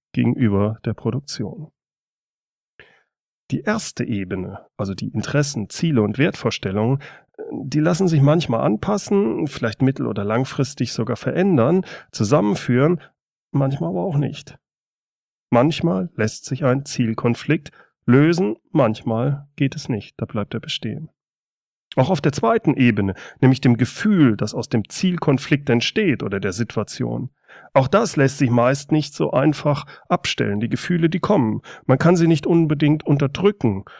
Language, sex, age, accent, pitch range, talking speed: German, male, 40-59, German, 115-155 Hz, 135 wpm